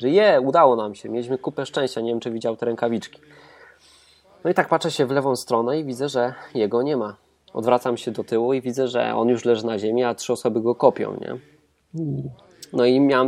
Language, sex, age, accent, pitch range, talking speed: Polish, male, 20-39, native, 110-130 Hz, 225 wpm